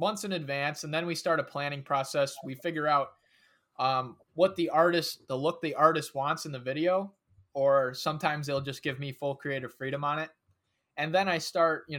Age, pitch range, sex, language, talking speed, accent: 20-39, 130-160 Hz, male, English, 205 wpm, American